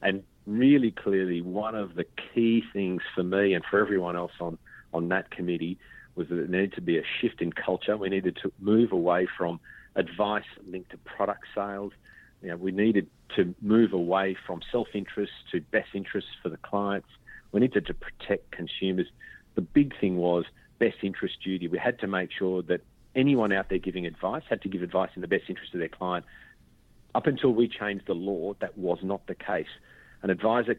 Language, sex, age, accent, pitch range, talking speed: English, male, 40-59, Australian, 90-105 Hz, 200 wpm